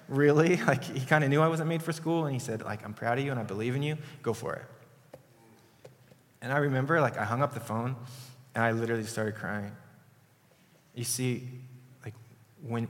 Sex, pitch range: male, 115-140 Hz